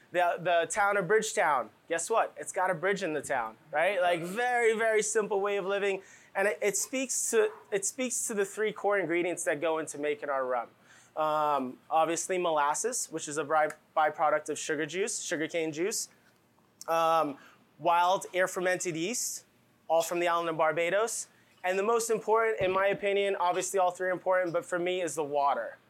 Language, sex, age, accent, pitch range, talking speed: English, male, 20-39, American, 155-200 Hz, 180 wpm